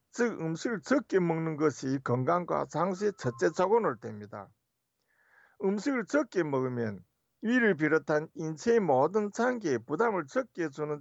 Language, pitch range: Korean, 135-205 Hz